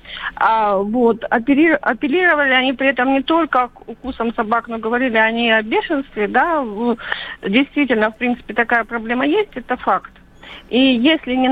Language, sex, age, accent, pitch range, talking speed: Russian, female, 40-59, native, 230-300 Hz, 140 wpm